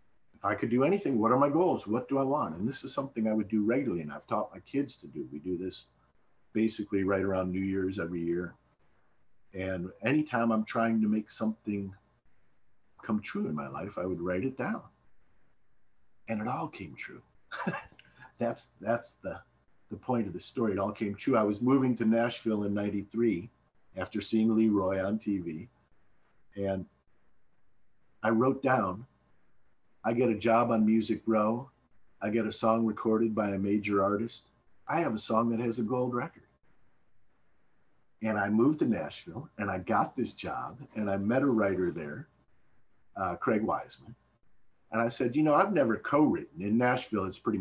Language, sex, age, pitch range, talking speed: English, male, 50-69, 100-115 Hz, 180 wpm